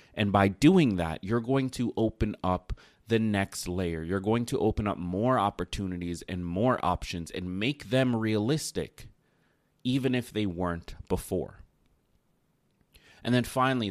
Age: 30-49